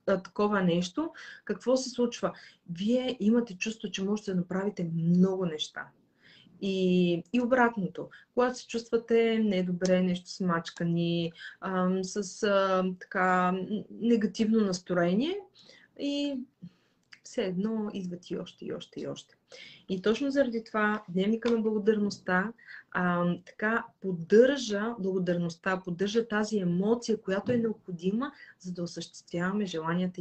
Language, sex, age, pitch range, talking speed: Bulgarian, female, 30-49, 180-220 Hz, 120 wpm